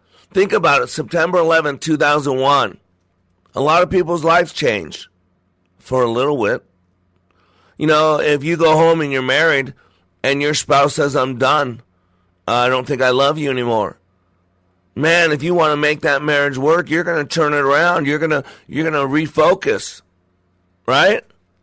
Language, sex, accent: English, male, American